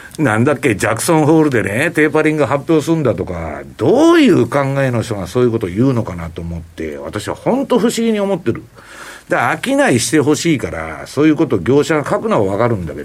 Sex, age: male, 60-79